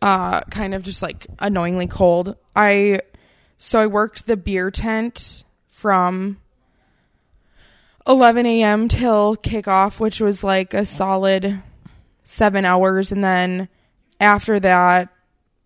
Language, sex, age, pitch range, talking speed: English, female, 20-39, 190-215 Hz, 115 wpm